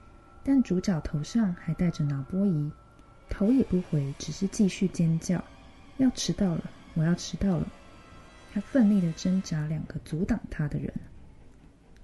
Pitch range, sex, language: 160-205 Hz, female, Chinese